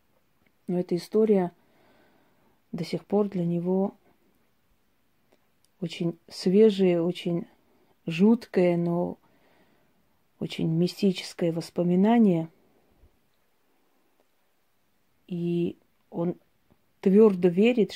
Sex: female